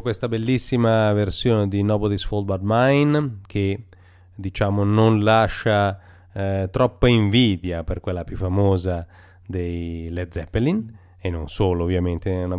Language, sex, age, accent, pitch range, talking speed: Italian, male, 30-49, native, 90-110 Hz, 135 wpm